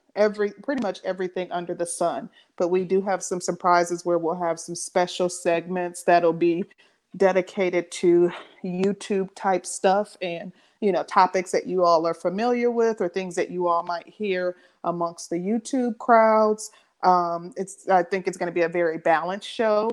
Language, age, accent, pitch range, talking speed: English, 30-49, American, 175-210 Hz, 180 wpm